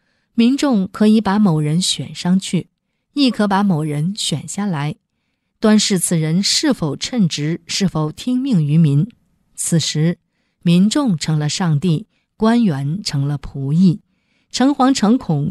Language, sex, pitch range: Chinese, female, 160-215 Hz